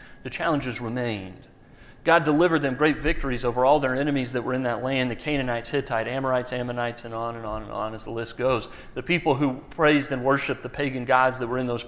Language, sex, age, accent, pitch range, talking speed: English, male, 40-59, American, 120-160 Hz, 225 wpm